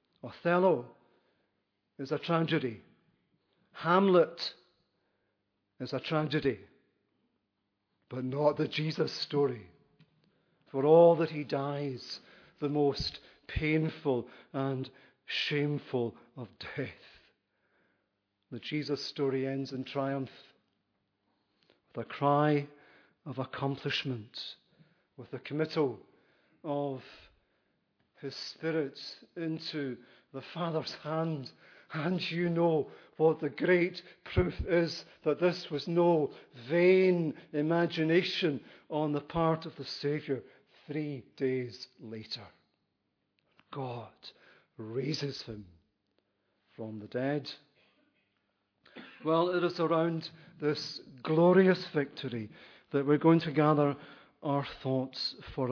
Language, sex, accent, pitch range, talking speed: English, male, British, 130-160 Hz, 95 wpm